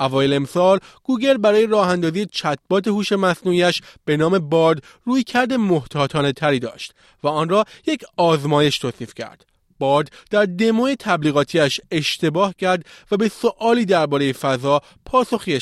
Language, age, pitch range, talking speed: Persian, 30-49, 135-195 Hz, 135 wpm